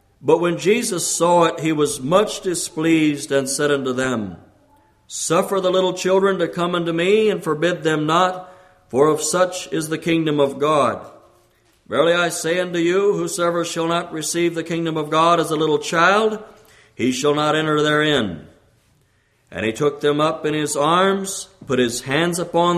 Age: 60-79